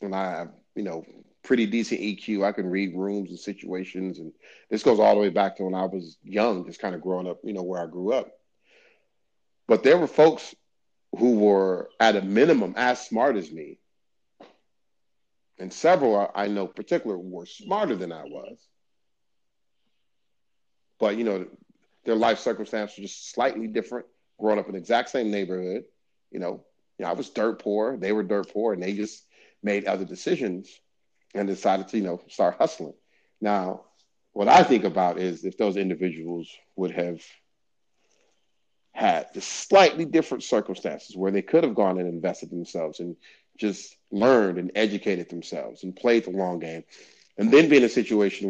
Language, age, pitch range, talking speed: English, 30-49, 90-110 Hz, 180 wpm